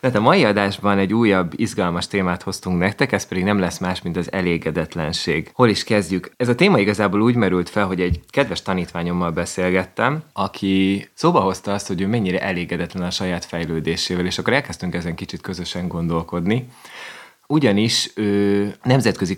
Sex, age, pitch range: male, 20-39, 90-105 Hz